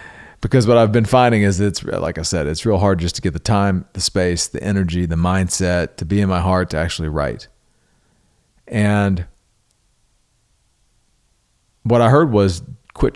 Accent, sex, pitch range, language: American, male, 95-125 Hz, English